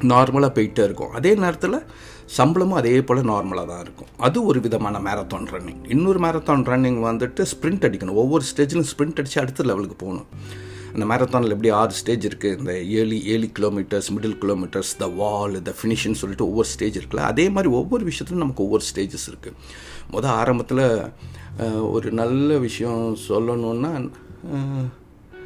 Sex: male